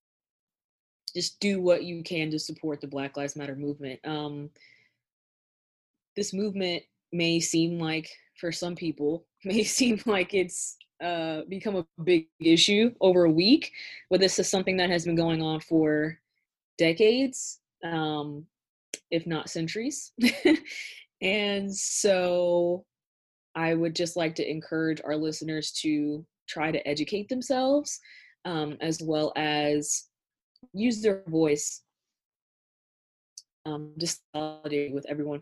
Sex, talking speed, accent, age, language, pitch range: female, 125 wpm, American, 20-39, English, 150-175 Hz